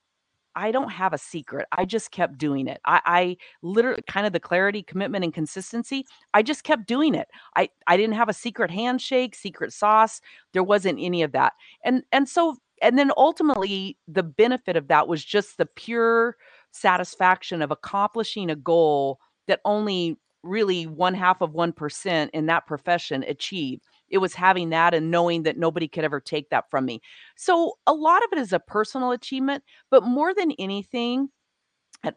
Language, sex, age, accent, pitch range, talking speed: English, female, 40-59, American, 160-215 Hz, 180 wpm